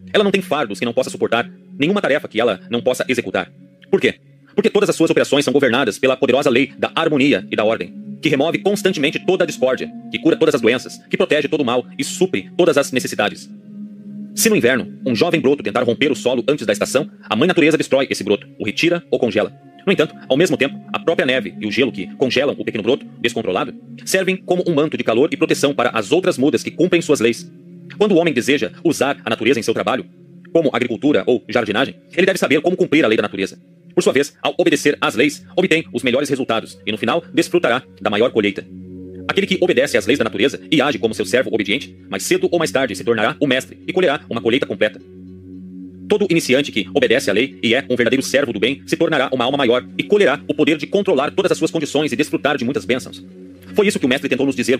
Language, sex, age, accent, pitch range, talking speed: Portuguese, male, 40-59, Brazilian, 115-175 Hz, 240 wpm